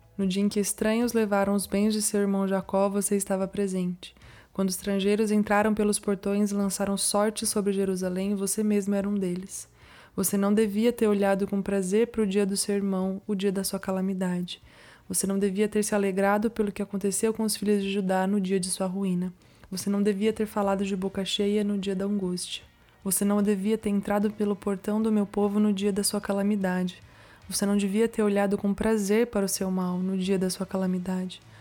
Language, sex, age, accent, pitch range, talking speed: Portuguese, female, 20-39, Brazilian, 195-210 Hz, 210 wpm